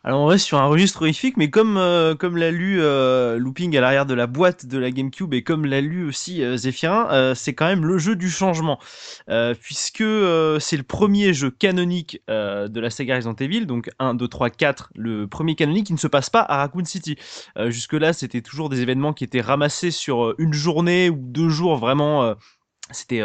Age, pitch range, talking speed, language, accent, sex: 20-39, 130-180 Hz, 225 wpm, French, French, male